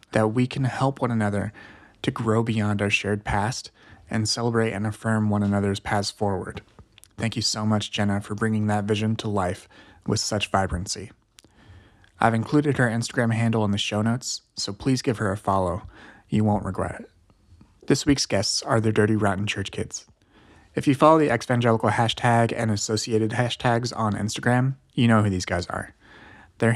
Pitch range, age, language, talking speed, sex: 105-120 Hz, 30-49, English, 180 wpm, male